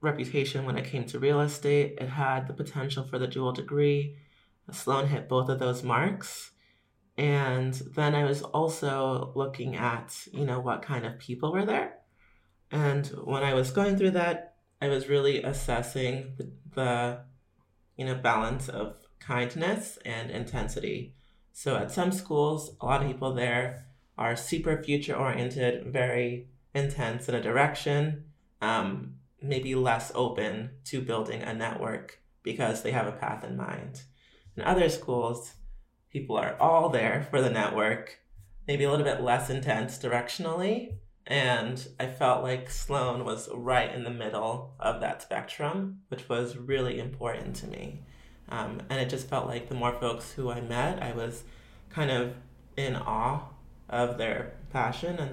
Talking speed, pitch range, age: 160 wpm, 120-140 Hz, 30-49